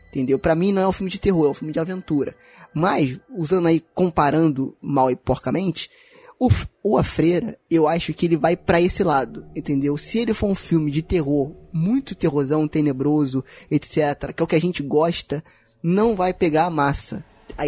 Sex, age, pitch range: male, 20-39, 150-195 Hz